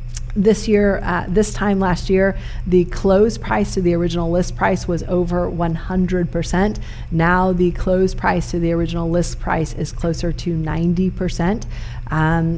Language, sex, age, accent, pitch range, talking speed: English, female, 40-59, American, 165-190 Hz, 155 wpm